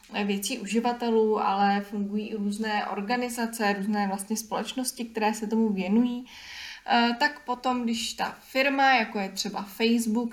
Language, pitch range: Czech, 205-235 Hz